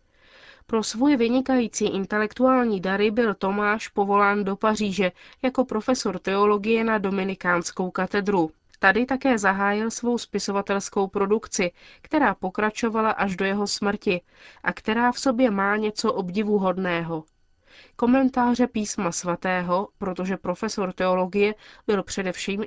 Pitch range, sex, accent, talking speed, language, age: 185-225 Hz, female, native, 115 wpm, Czech, 30-49